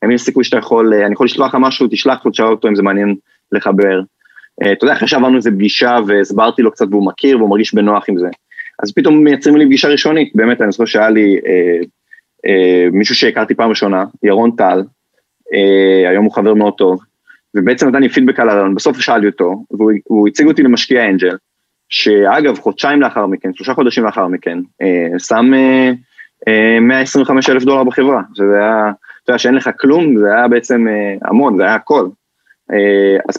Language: Hebrew